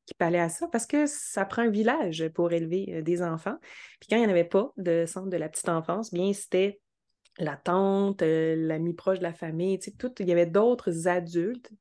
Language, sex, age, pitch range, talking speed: French, female, 20-39, 170-215 Hz, 210 wpm